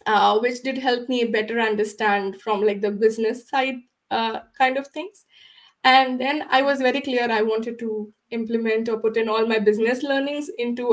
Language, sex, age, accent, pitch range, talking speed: English, female, 20-39, Indian, 210-260 Hz, 185 wpm